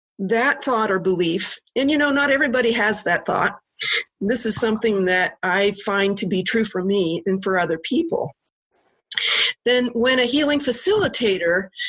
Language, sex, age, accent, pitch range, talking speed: English, female, 50-69, American, 195-255 Hz, 160 wpm